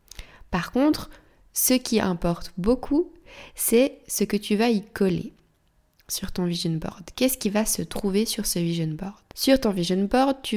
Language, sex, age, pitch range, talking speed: French, female, 20-39, 180-225 Hz, 175 wpm